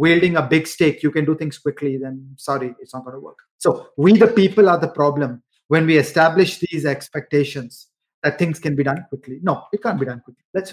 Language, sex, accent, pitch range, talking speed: Hindi, male, native, 150-210 Hz, 230 wpm